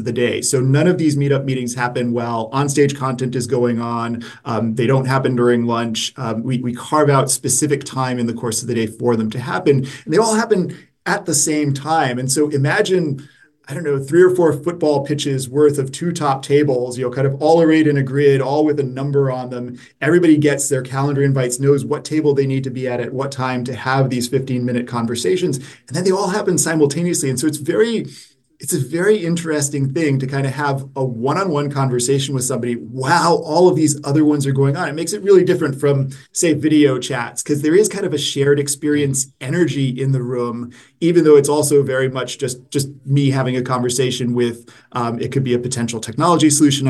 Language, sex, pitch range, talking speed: English, male, 125-150 Hz, 225 wpm